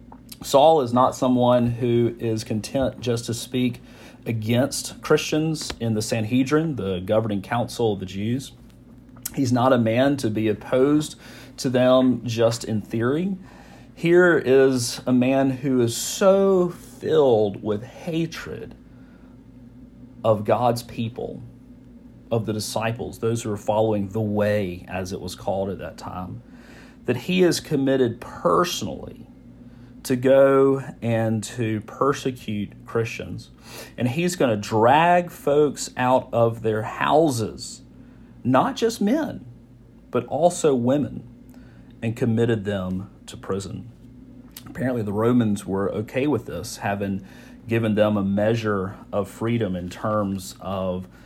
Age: 40-59